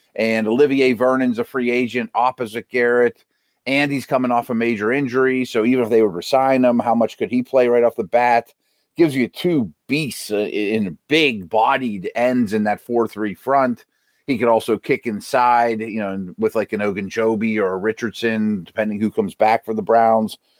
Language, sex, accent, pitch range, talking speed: English, male, American, 110-140 Hz, 190 wpm